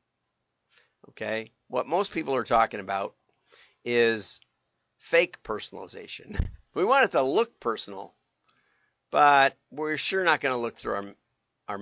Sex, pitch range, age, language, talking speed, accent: male, 110-145 Hz, 50-69, English, 130 wpm, American